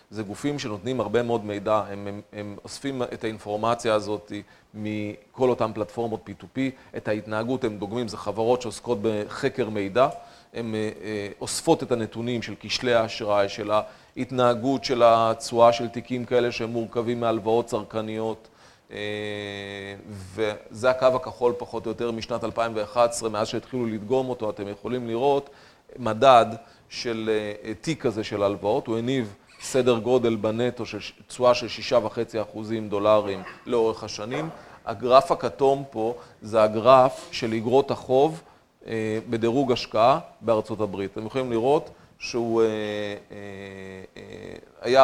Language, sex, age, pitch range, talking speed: Hebrew, male, 40-59, 105-120 Hz, 125 wpm